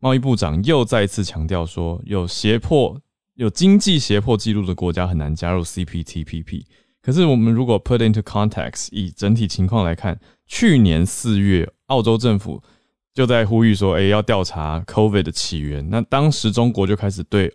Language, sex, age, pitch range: Chinese, male, 20-39, 90-115 Hz